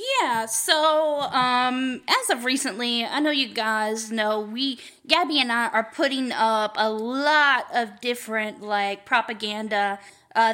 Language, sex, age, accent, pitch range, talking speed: English, female, 10-29, American, 225-295 Hz, 140 wpm